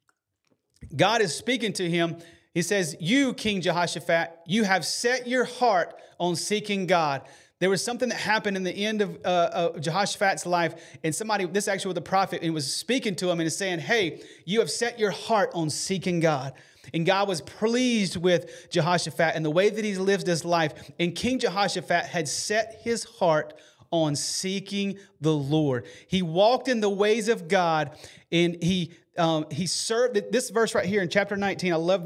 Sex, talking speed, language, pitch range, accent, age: male, 185 wpm, English, 170-235 Hz, American, 30-49